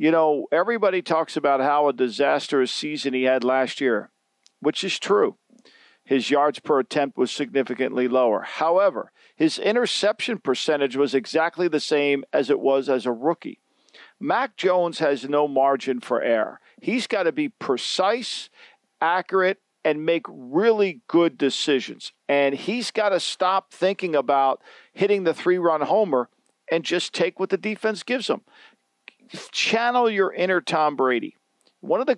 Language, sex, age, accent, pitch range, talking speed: English, male, 50-69, American, 145-195 Hz, 155 wpm